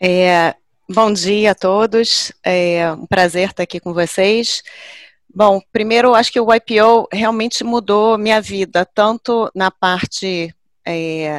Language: English